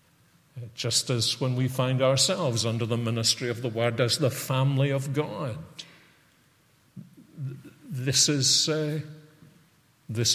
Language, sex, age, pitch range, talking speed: English, male, 50-69, 130-160 Hz, 110 wpm